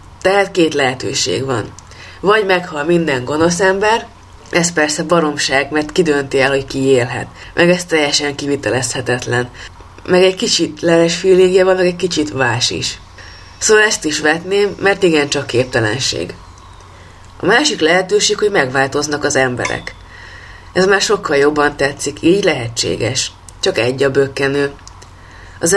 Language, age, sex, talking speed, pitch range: Hungarian, 20-39, female, 135 wpm, 125-165 Hz